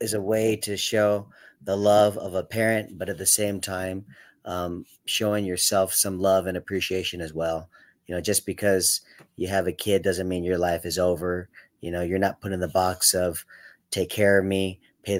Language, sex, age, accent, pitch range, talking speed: English, male, 30-49, American, 90-100 Hz, 205 wpm